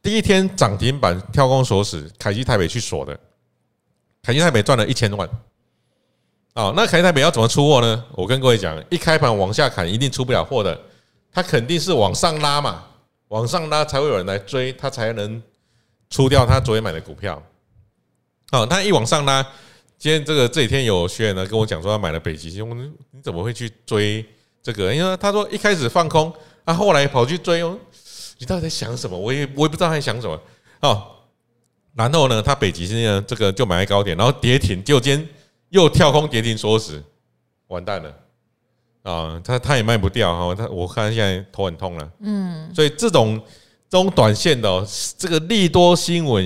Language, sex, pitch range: Chinese, male, 100-145 Hz